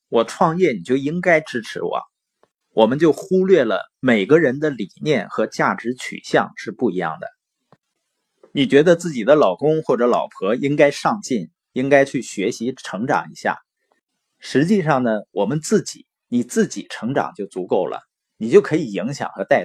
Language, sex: Chinese, male